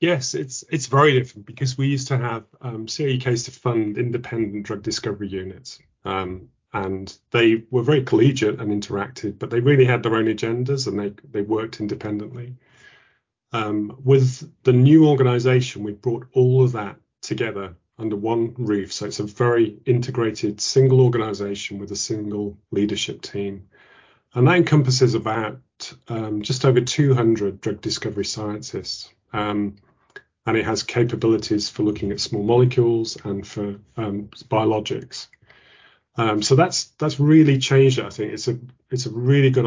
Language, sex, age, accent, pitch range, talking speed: English, male, 30-49, British, 105-125 Hz, 155 wpm